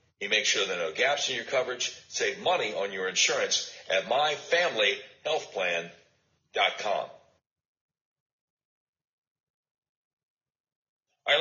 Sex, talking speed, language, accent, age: male, 100 wpm, English, American, 60-79